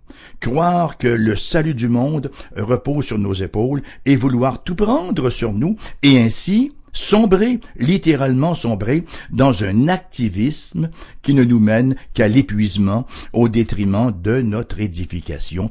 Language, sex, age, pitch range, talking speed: English, male, 60-79, 105-150 Hz, 135 wpm